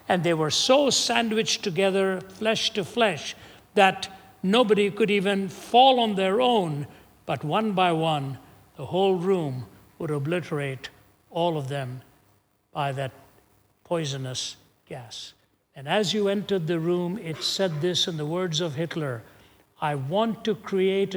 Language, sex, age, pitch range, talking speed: English, male, 60-79, 140-210 Hz, 145 wpm